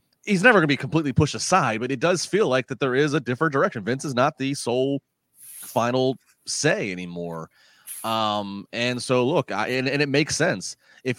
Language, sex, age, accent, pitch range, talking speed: English, male, 30-49, American, 105-135 Hz, 205 wpm